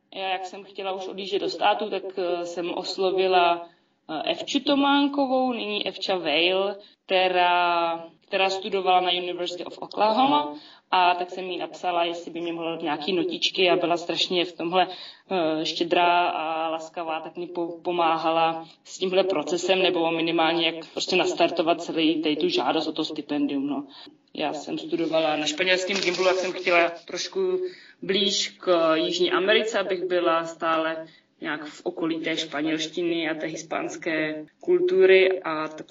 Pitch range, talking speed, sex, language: 170-205 Hz, 150 wpm, female, Czech